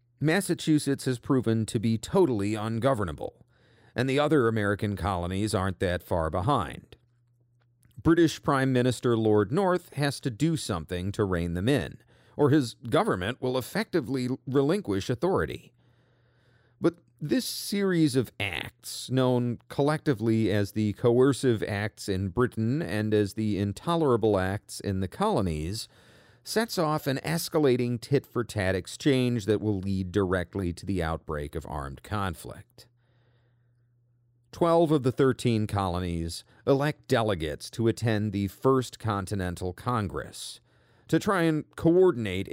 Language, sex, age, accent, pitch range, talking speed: English, male, 40-59, American, 100-130 Hz, 125 wpm